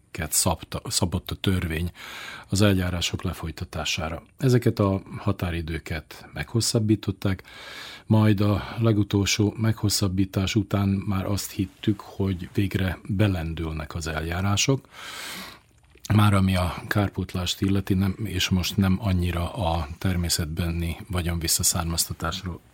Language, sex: Hungarian, male